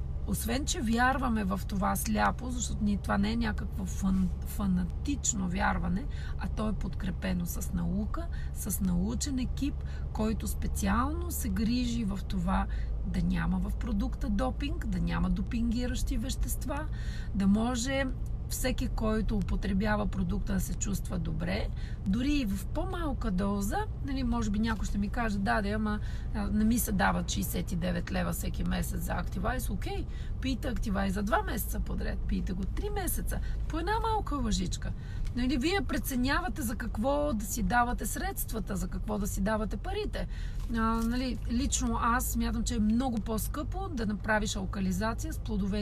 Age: 30-49